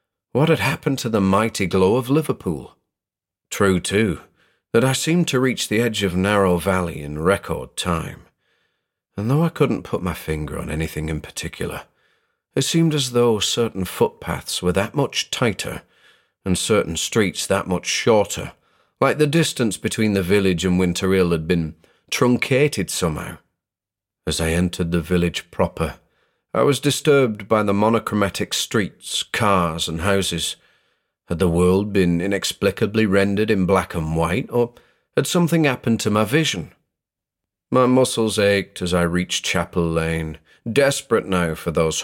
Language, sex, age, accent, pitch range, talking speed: English, male, 40-59, British, 90-120 Hz, 155 wpm